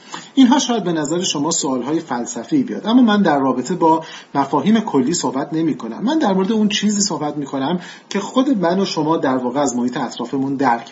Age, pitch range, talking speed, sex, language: 40-59, 140-200 Hz, 200 wpm, male, Persian